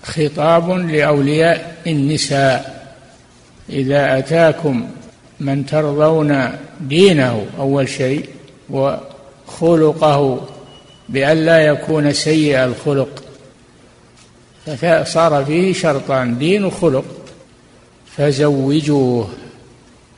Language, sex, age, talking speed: Arabic, male, 60-79, 65 wpm